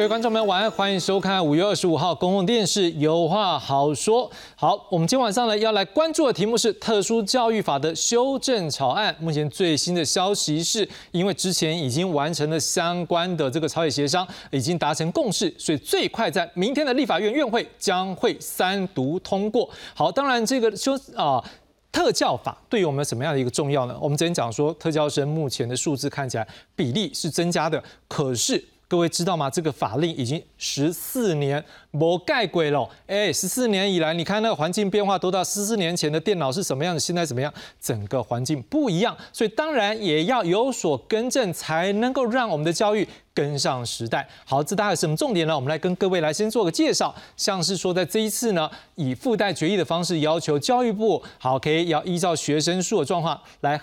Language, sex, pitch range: Chinese, male, 155-205 Hz